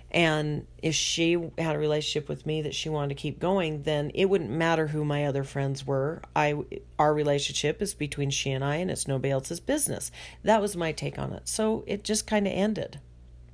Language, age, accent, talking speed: English, 40-59, American, 210 wpm